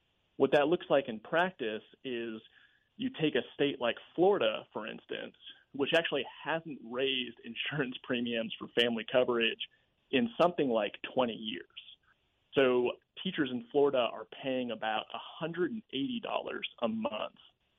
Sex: male